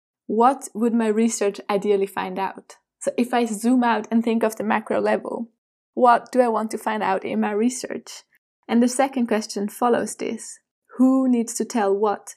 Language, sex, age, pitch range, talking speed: English, female, 20-39, 210-245 Hz, 190 wpm